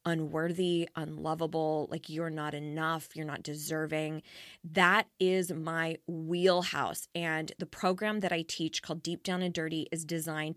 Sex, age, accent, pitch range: female, 20-39, American, 160-195 Hz